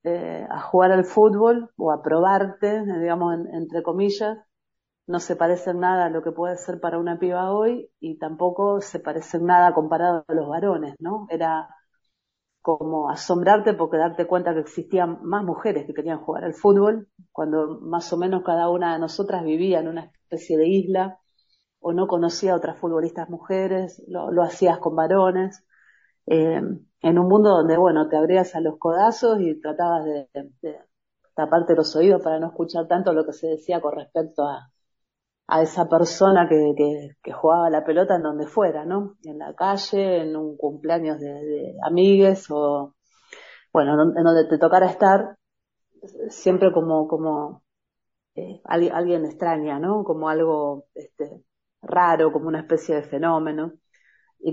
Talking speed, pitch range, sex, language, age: 165 wpm, 160-185 Hz, female, English, 40-59